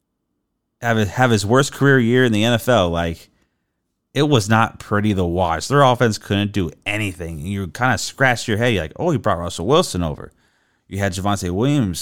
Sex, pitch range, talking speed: male, 90-145 Hz, 190 wpm